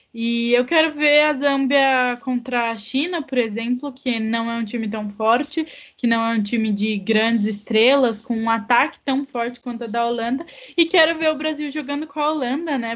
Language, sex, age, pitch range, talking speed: Portuguese, female, 10-29, 225-280 Hz, 210 wpm